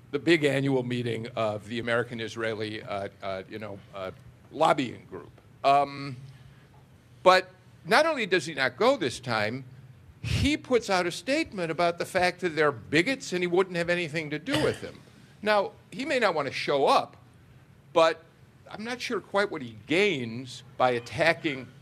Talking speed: 170 wpm